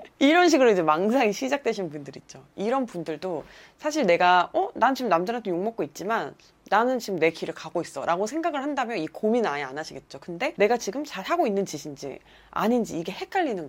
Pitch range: 160-265 Hz